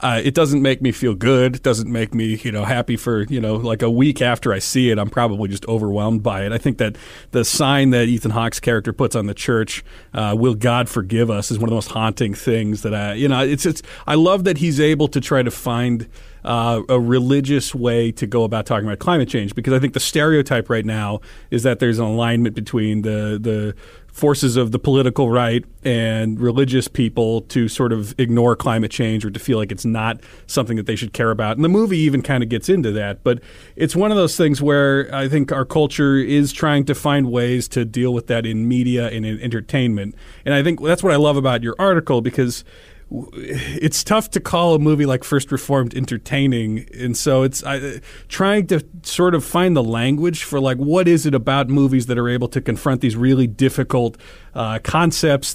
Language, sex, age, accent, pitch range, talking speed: English, male, 40-59, American, 115-140 Hz, 225 wpm